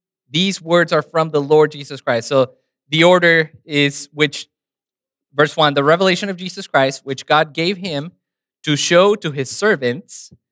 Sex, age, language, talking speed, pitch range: male, 20-39, English, 165 wpm, 140-185 Hz